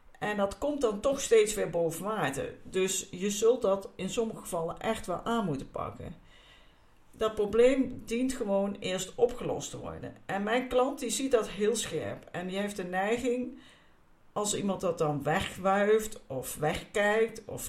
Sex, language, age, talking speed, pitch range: female, Dutch, 50-69, 170 wpm, 165-230 Hz